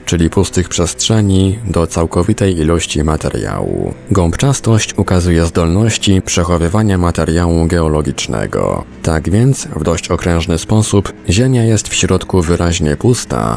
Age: 20-39